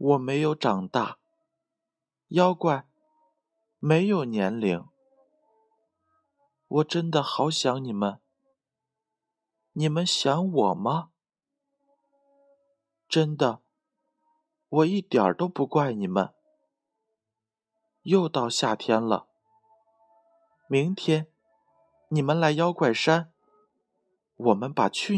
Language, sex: Chinese, male